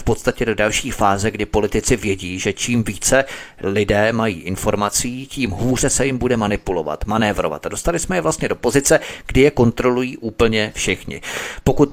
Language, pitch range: Czech, 105-130 Hz